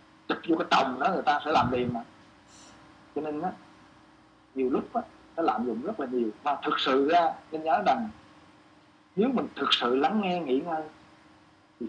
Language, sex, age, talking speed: Vietnamese, male, 20-39, 185 wpm